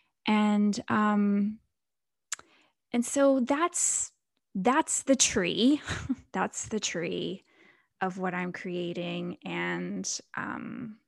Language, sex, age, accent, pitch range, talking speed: English, female, 10-29, American, 195-235 Hz, 90 wpm